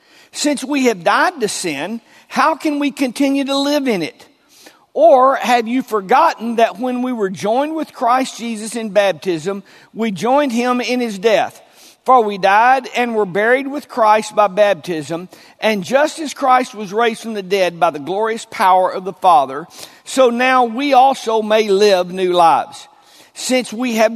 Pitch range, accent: 200-255 Hz, American